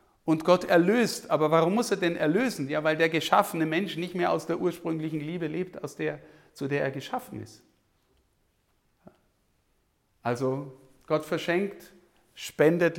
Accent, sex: German, male